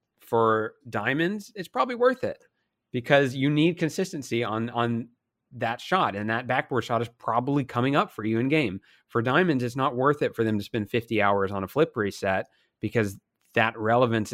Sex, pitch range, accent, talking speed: male, 105-130 Hz, American, 190 wpm